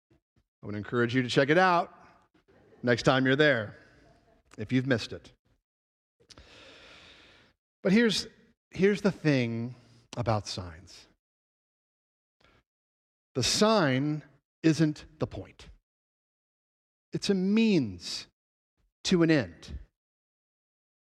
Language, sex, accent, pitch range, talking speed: English, male, American, 130-185 Hz, 95 wpm